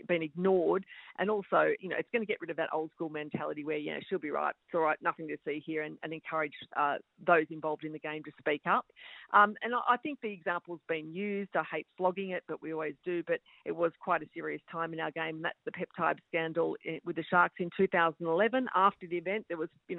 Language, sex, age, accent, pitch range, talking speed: English, female, 50-69, Australian, 160-190 Hz, 245 wpm